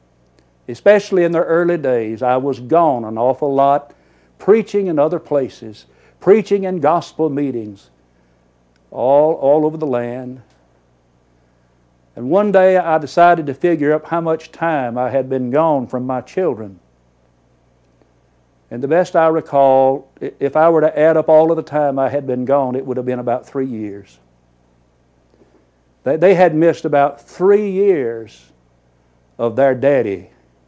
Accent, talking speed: American, 155 wpm